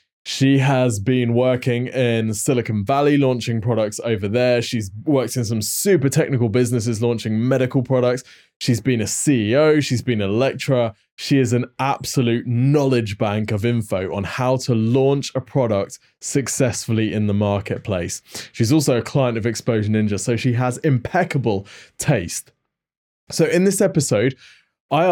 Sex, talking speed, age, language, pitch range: male, 155 wpm, 20-39, English, 115-140 Hz